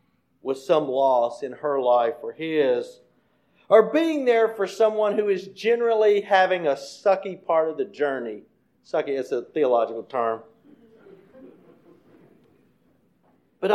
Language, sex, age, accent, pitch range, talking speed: English, male, 50-69, American, 140-195 Hz, 125 wpm